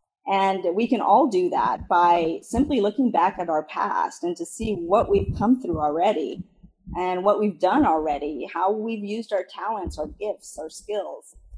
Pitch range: 175-225 Hz